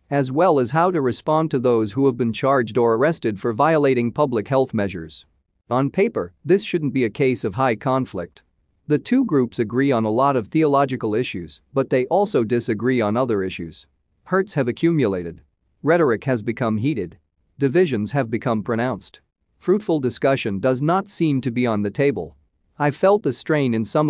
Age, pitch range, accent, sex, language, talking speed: 40-59, 110-150 Hz, American, male, English, 180 wpm